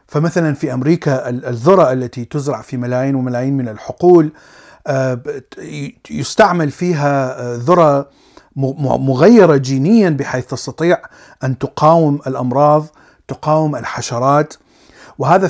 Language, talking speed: Arabic, 95 wpm